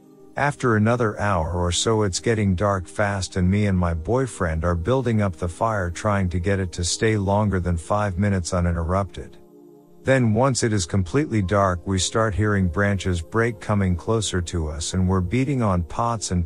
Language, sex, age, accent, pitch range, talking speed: English, male, 50-69, American, 90-110 Hz, 185 wpm